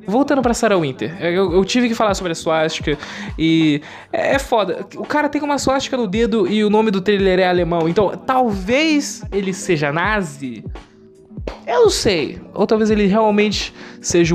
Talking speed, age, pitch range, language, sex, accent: 175 wpm, 20-39, 140-210 Hz, Portuguese, male, Brazilian